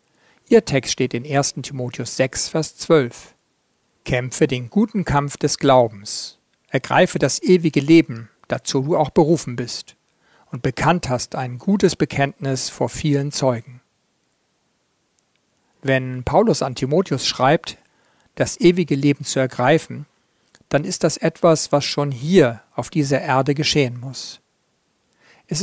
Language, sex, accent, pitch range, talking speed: German, male, German, 125-155 Hz, 130 wpm